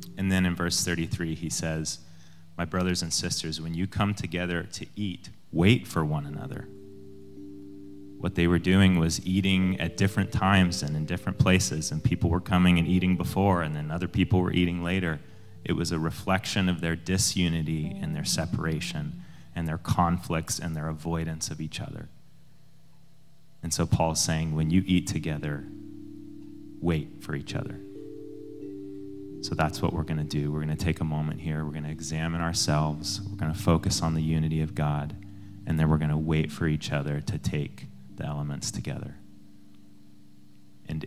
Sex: male